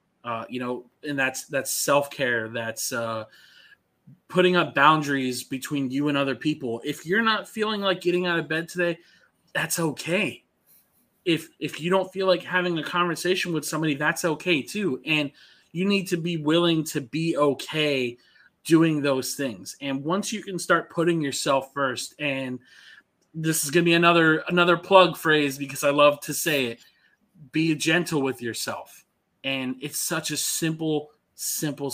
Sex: male